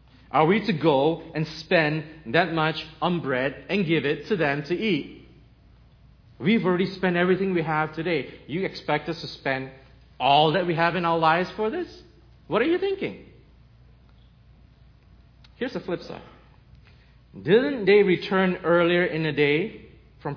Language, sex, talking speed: English, male, 160 wpm